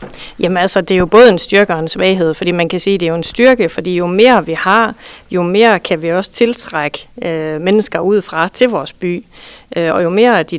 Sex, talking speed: female, 245 wpm